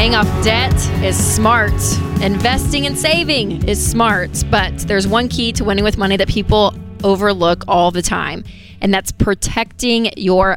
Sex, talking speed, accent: female, 160 wpm, American